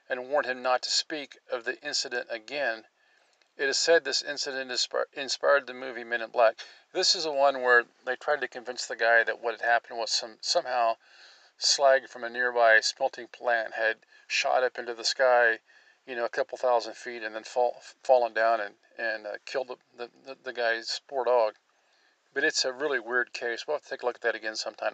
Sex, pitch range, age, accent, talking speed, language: male, 115-150 Hz, 40-59, American, 215 wpm, English